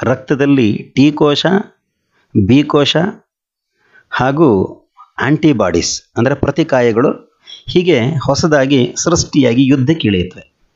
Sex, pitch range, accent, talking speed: male, 115-150 Hz, native, 60 wpm